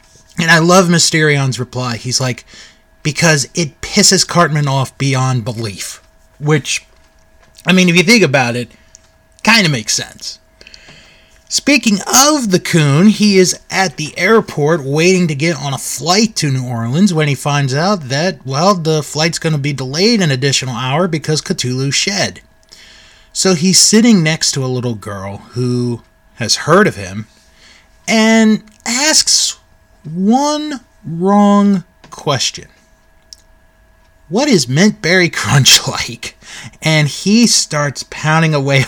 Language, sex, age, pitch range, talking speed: English, male, 30-49, 115-175 Hz, 140 wpm